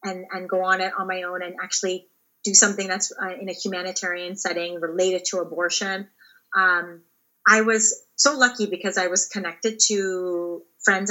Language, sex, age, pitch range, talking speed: English, female, 30-49, 180-205 Hz, 175 wpm